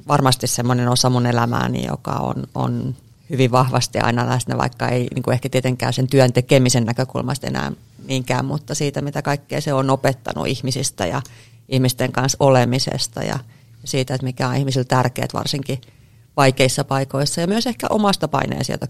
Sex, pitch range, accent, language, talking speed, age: female, 125-150 Hz, native, Finnish, 160 wpm, 30-49